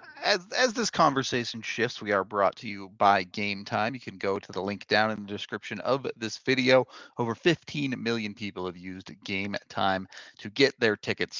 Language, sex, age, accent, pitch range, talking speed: English, male, 30-49, American, 100-125 Hz, 200 wpm